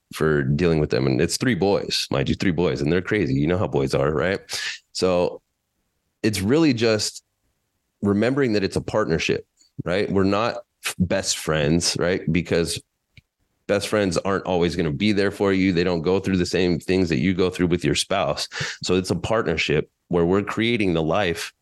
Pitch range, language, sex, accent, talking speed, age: 85-100 Hz, English, male, American, 195 wpm, 30-49